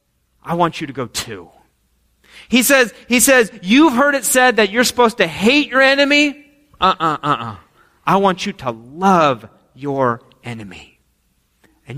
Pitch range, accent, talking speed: 170-245 Hz, American, 155 wpm